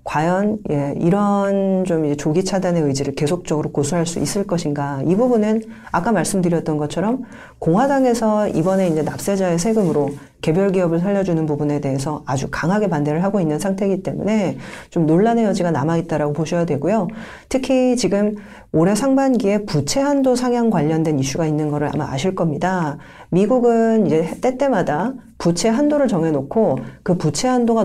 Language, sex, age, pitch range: Korean, female, 40-59, 155-225 Hz